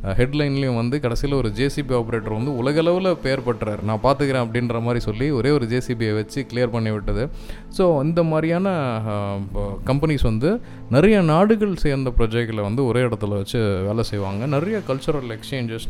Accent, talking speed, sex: native, 150 wpm, male